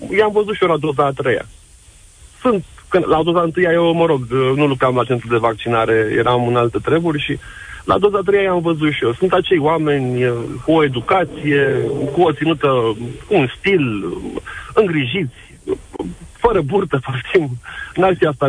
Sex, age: male, 40-59